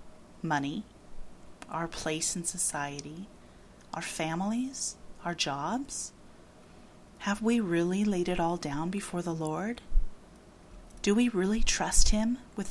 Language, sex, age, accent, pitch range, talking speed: English, female, 30-49, American, 155-195 Hz, 120 wpm